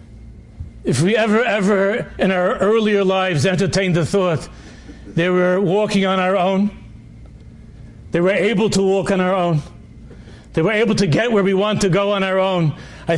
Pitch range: 150-195 Hz